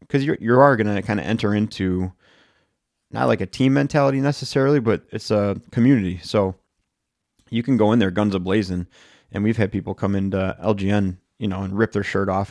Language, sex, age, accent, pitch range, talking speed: English, male, 30-49, American, 95-110 Hz, 205 wpm